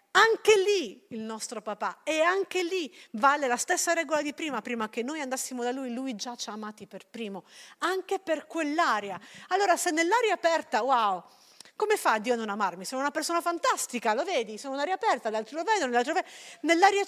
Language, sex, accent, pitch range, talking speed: Italian, female, native, 215-330 Hz, 205 wpm